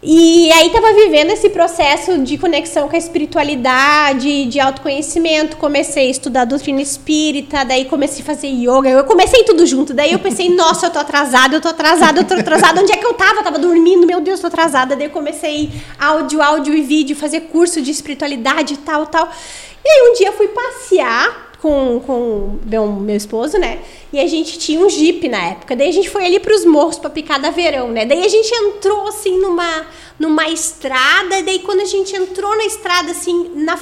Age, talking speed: 20-39, 210 wpm